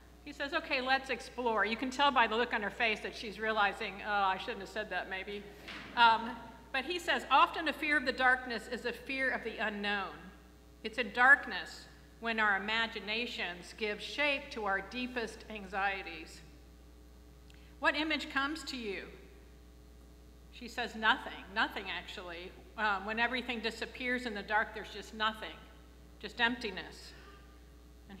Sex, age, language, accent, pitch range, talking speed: female, 50-69, English, American, 190-235 Hz, 160 wpm